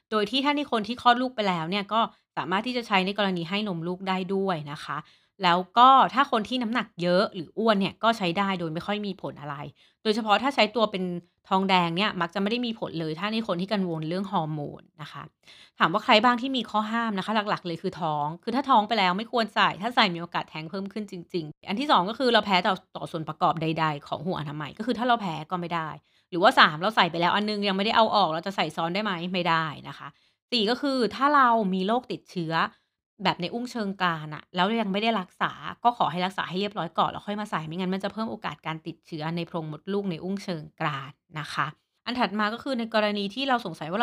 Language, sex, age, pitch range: Thai, female, 30-49, 175-225 Hz